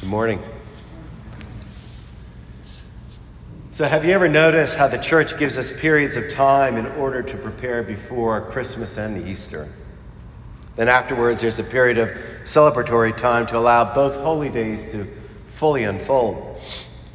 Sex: male